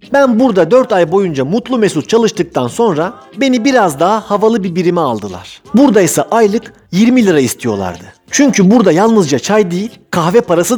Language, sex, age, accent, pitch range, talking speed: Turkish, male, 50-69, native, 170-230 Hz, 160 wpm